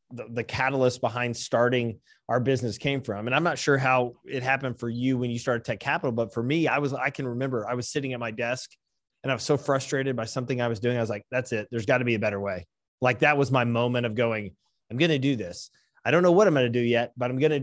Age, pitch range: 30-49, 120-140 Hz